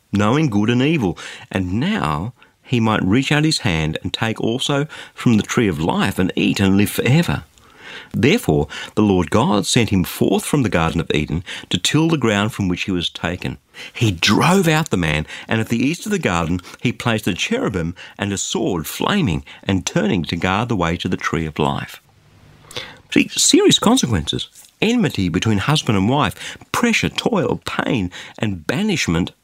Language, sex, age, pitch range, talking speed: English, male, 50-69, 95-150 Hz, 185 wpm